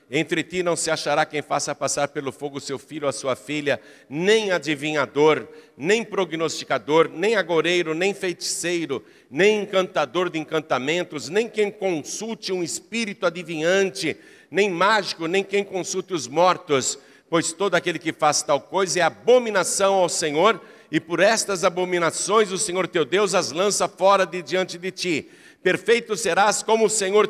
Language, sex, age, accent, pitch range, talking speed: Portuguese, male, 60-79, Brazilian, 150-205 Hz, 160 wpm